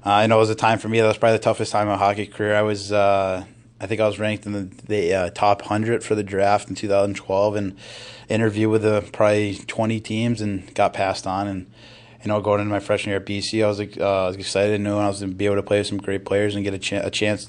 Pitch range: 100-105 Hz